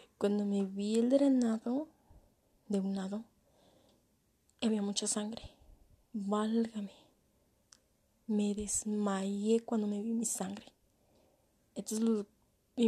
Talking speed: 100 wpm